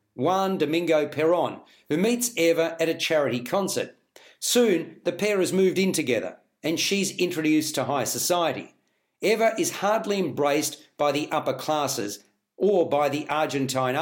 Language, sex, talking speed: English, male, 150 wpm